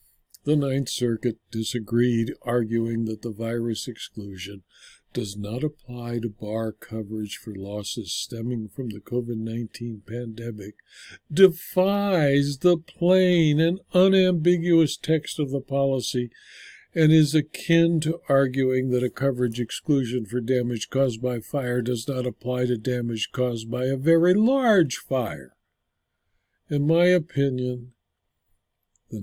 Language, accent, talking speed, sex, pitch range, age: English, American, 125 wpm, male, 115-145 Hz, 60-79